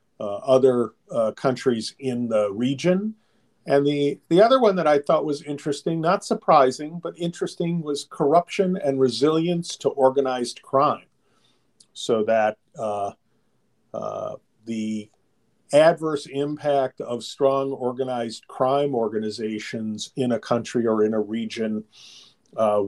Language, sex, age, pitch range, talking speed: English, male, 50-69, 110-140 Hz, 125 wpm